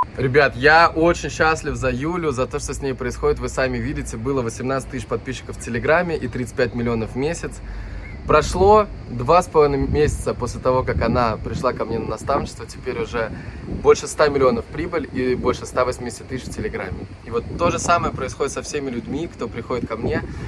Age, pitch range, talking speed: 20-39, 115-155 Hz, 190 wpm